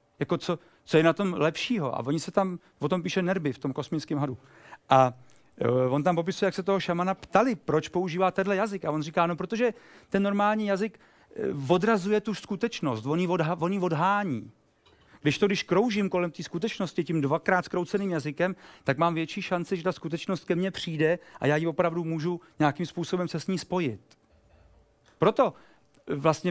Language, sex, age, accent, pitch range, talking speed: Czech, male, 40-59, native, 150-190 Hz, 185 wpm